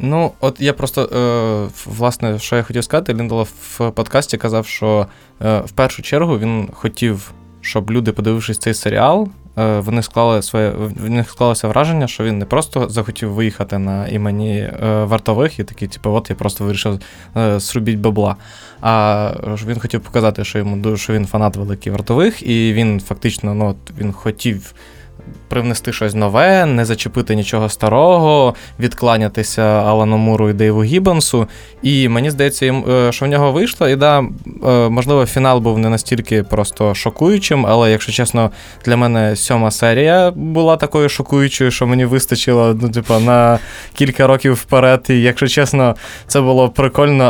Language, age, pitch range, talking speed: Ukrainian, 20-39, 110-130 Hz, 155 wpm